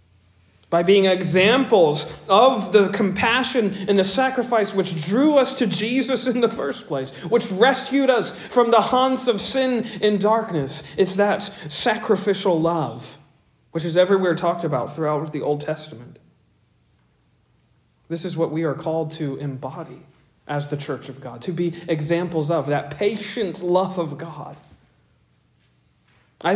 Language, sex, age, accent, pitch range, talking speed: English, male, 40-59, American, 155-215 Hz, 145 wpm